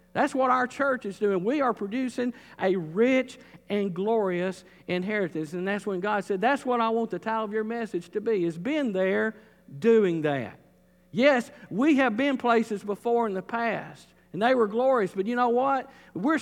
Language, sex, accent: English, male, American